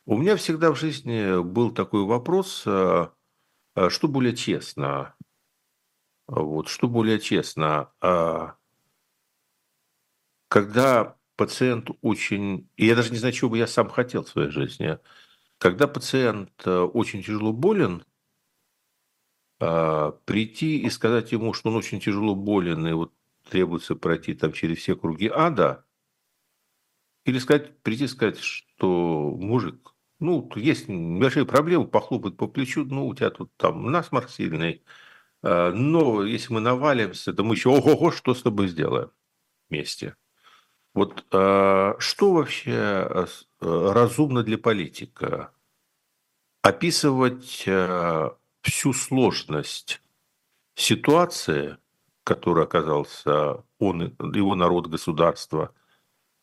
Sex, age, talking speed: male, 50-69, 110 wpm